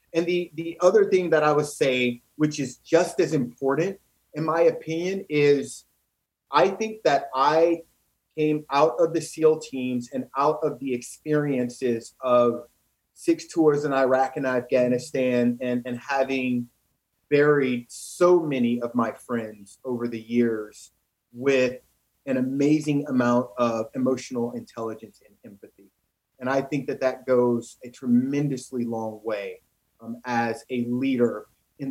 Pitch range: 125-165 Hz